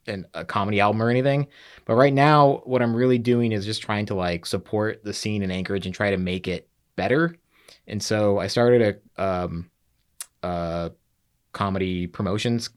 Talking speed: 170 wpm